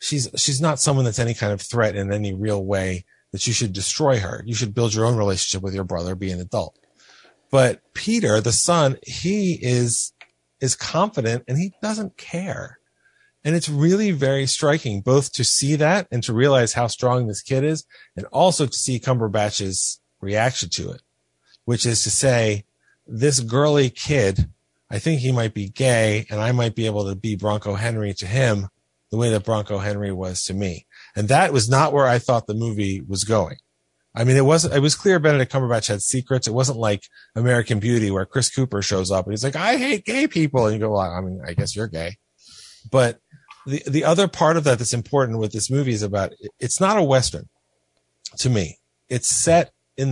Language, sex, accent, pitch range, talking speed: English, male, American, 105-135 Hz, 205 wpm